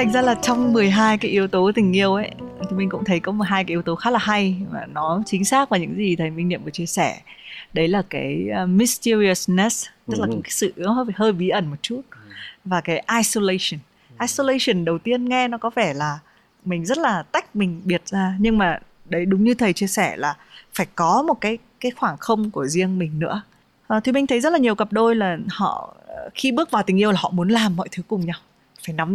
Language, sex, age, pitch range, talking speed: Vietnamese, female, 20-39, 180-235 Hz, 235 wpm